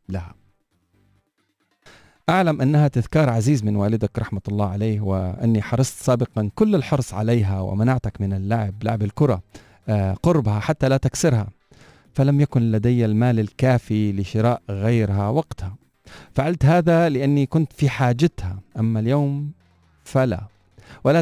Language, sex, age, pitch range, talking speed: Arabic, male, 40-59, 100-135 Hz, 120 wpm